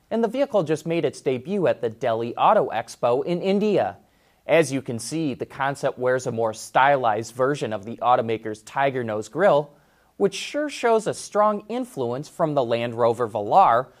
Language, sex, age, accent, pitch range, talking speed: English, male, 30-49, American, 120-185 Hz, 175 wpm